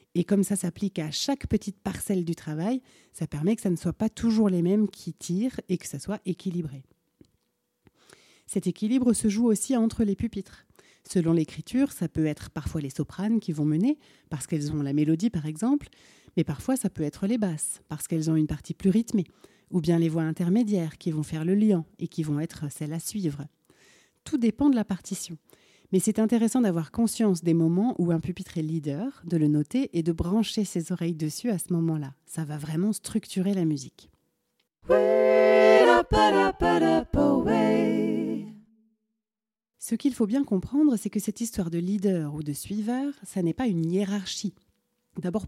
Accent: French